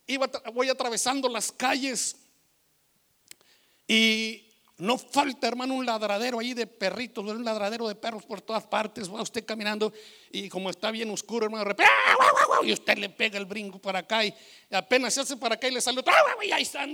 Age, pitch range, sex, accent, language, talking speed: 60-79, 195-240 Hz, male, Mexican, Spanish, 180 wpm